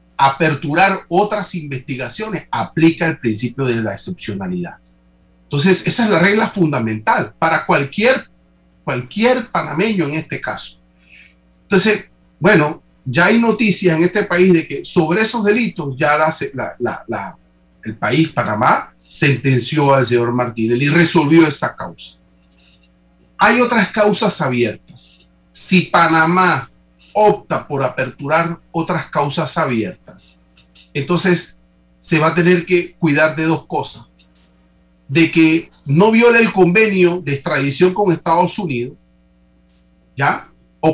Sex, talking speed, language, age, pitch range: male, 120 wpm, Spanish, 40-59, 110-180 Hz